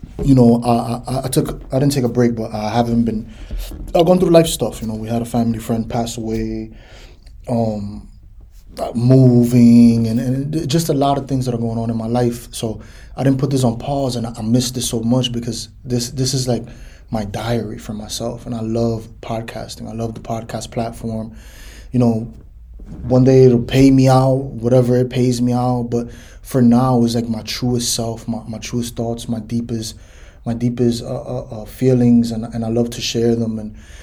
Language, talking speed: English, 205 wpm